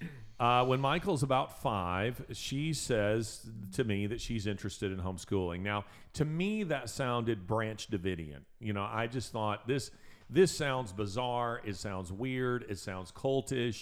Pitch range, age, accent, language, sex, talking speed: 100-135 Hz, 40-59, American, English, male, 155 wpm